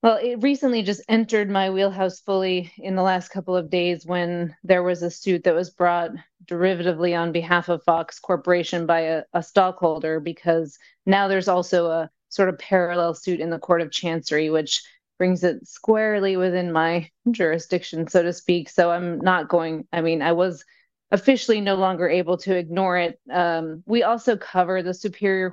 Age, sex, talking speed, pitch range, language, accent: 30-49, female, 180 wpm, 170-190 Hz, English, American